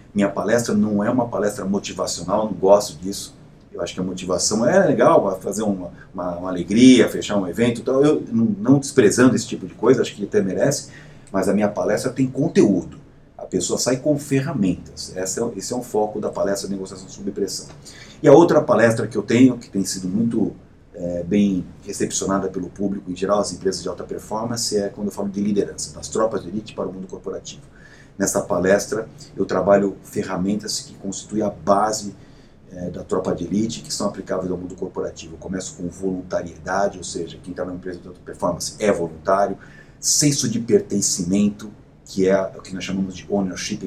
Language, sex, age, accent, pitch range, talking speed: Portuguese, male, 40-59, Brazilian, 95-120 Hz, 200 wpm